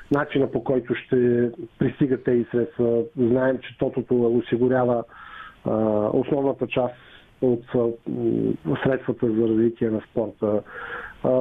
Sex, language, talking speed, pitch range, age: male, Bulgarian, 115 wpm, 125-160 Hz, 40-59